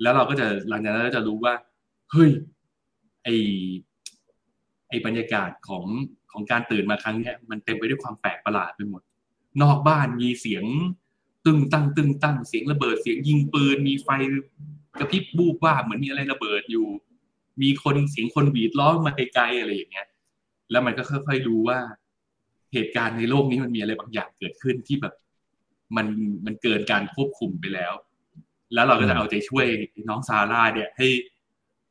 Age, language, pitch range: 20-39, Thai, 110-140 Hz